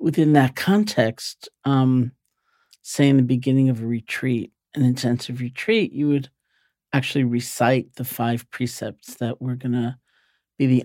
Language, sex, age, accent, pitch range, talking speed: English, male, 50-69, American, 120-140 Hz, 150 wpm